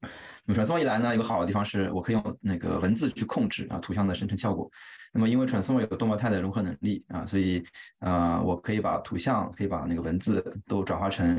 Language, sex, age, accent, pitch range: Chinese, male, 20-39, native, 90-105 Hz